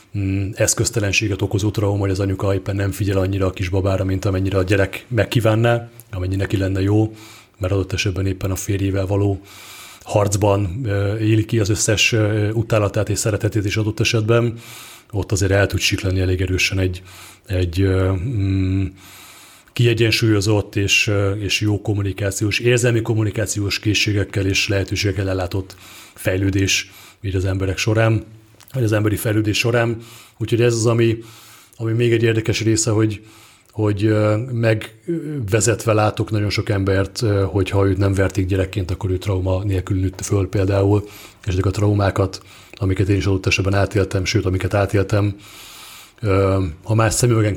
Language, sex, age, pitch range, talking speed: Hungarian, male, 30-49, 95-110 Hz, 145 wpm